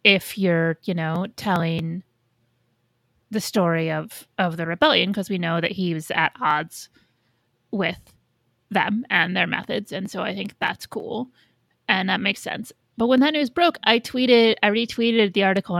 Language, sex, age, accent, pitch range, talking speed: English, female, 30-49, American, 165-215 Hz, 170 wpm